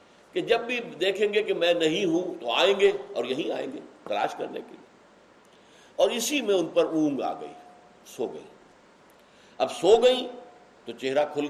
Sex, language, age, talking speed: male, Urdu, 60-79, 190 wpm